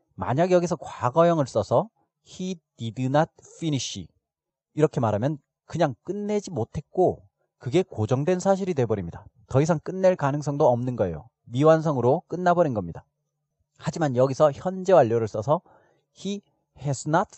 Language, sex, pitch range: Korean, male, 120-165 Hz